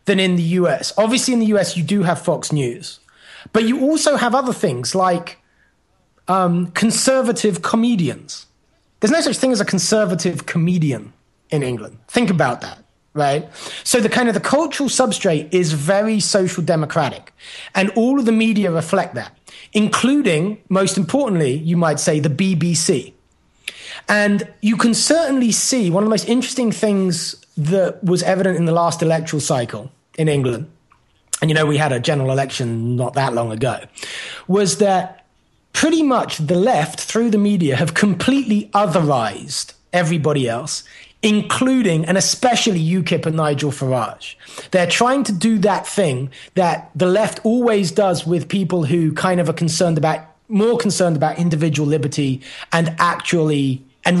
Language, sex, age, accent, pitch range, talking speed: English, male, 30-49, British, 155-210 Hz, 160 wpm